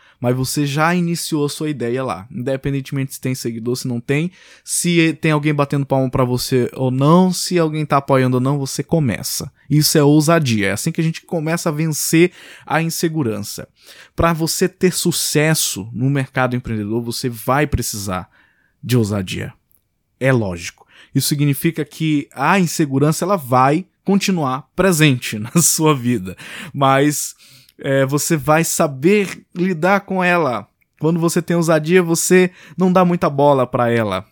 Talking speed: 155 wpm